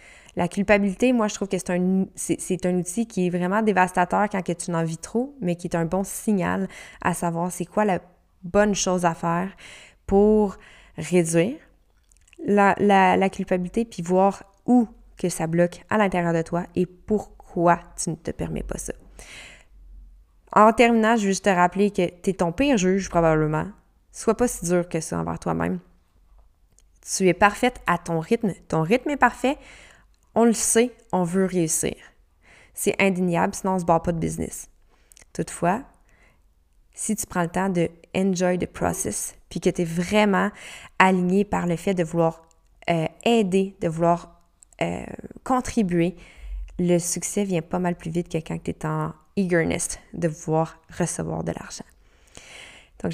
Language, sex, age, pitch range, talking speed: French, female, 20-39, 170-205 Hz, 175 wpm